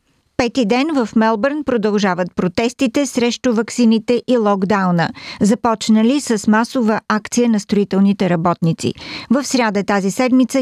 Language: Bulgarian